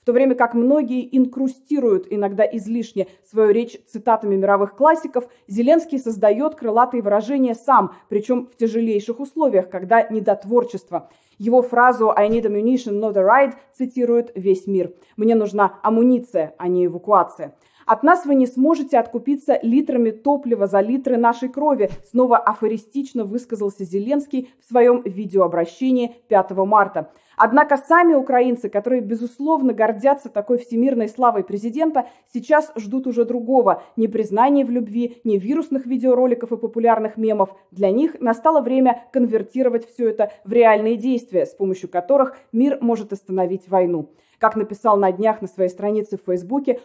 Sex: female